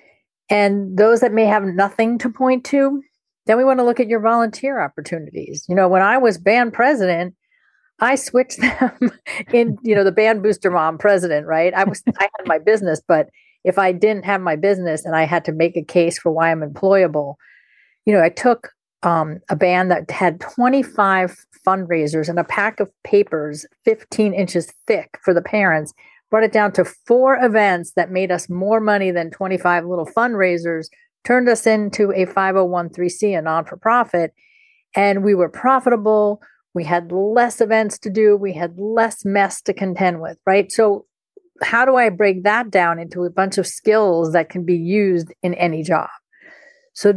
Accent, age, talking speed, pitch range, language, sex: American, 50-69, 180 wpm, 175-225 Hz, English, female